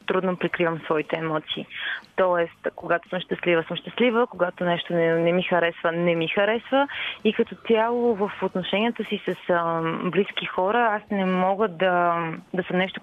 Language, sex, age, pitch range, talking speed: Bulgarian, female, 20-39, 170-210 Hz, 165 wpm